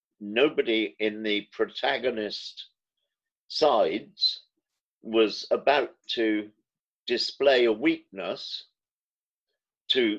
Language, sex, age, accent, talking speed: English, male, 50-69, British, 70 wpm